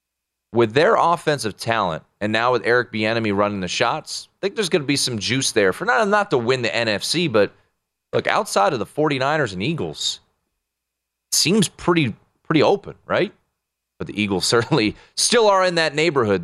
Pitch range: 105-155 Hz